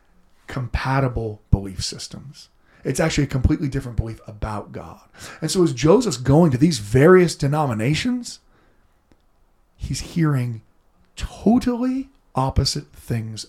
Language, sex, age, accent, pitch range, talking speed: English, male, 40-59, American, 125-180 Hz, 110 wpm